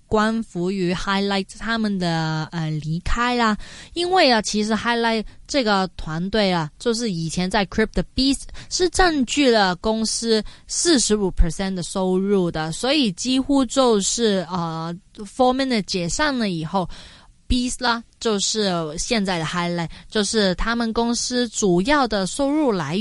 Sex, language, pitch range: female, Chinese, 185-245 Hz